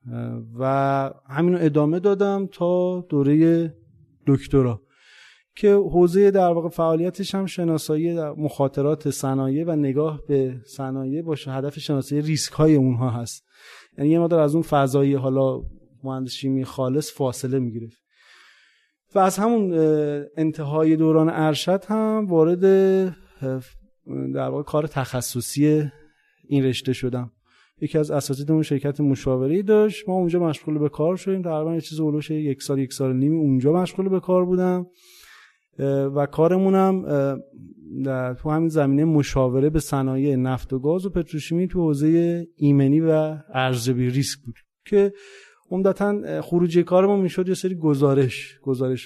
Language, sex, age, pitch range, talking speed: Persian, male, 30-49, 135-165 Hz, 140 wpm